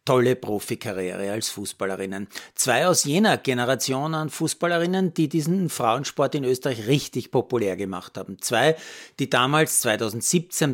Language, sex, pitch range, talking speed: German, male, 115-155 Hz, 130 wpm